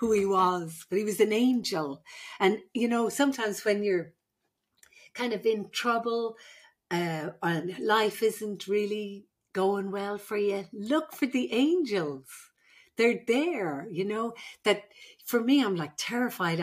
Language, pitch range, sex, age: English, 165-215 Hz, female, 60-79